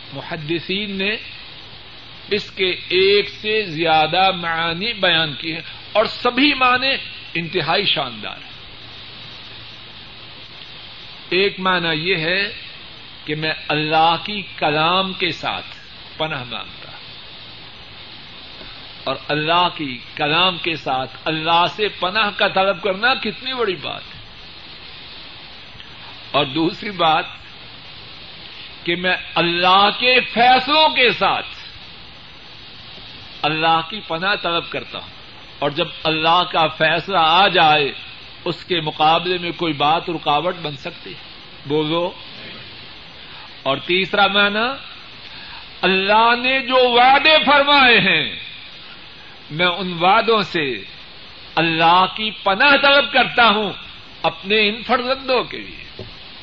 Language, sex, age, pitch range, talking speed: Urdu, male, 50-69, 155-205 Hz, 110 wpm